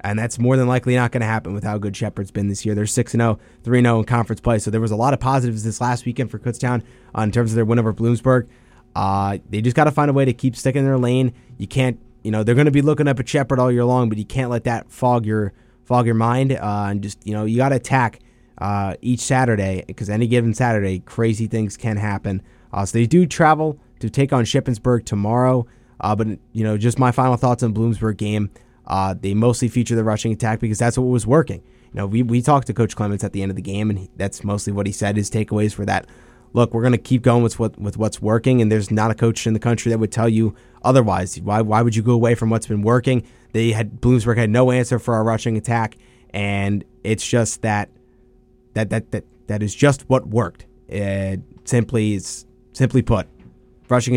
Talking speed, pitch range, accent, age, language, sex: 245 wpm, 105-125 Hz, American, 20-39, English, male